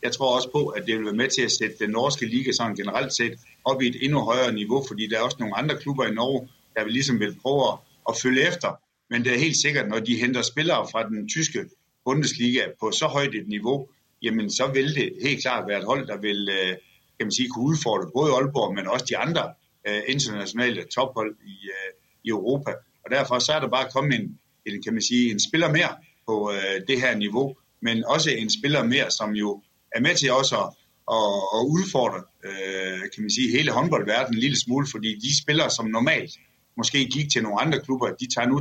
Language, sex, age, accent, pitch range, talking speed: Danish, male, 60-79, native, 110-135 Hz, 225 wpm